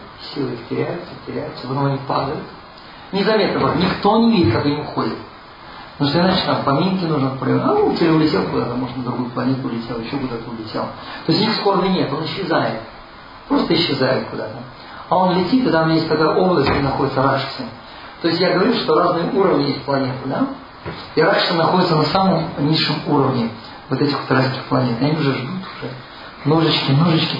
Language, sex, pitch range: Russian, male, 130-165 Hz